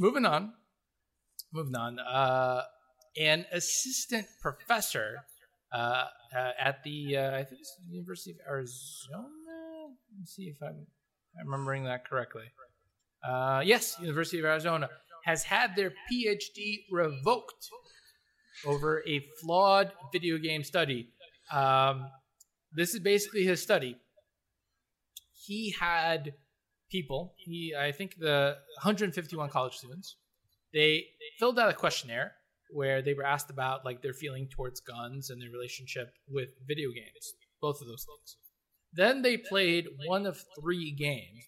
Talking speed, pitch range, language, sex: 135 wpm, 135-195 Hz, English, male